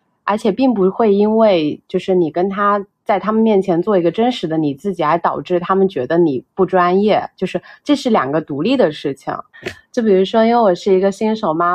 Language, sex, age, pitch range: Chinese, female, 30-49, 160-195 Hz